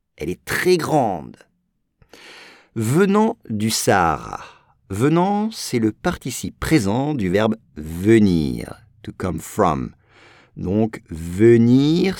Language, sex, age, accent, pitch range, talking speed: English, male, 50-69, French, 105-165 Hz, 100 wpm